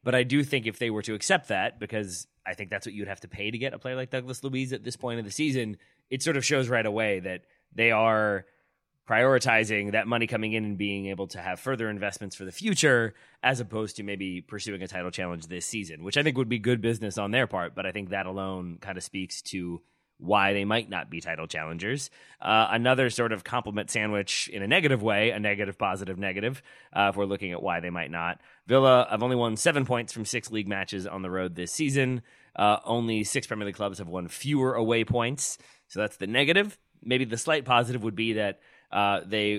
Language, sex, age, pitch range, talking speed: English, male, 30-49, 100-125 Hz, 235 wpm